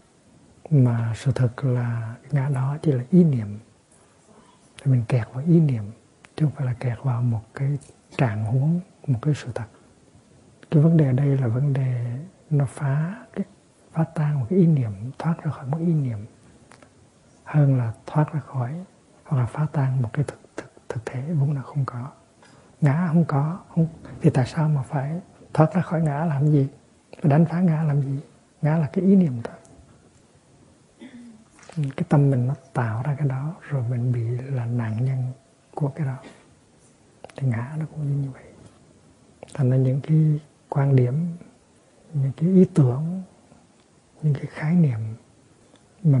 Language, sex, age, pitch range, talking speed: Vietnamese, male, 60-79, 125-155 Hz, 175 wpm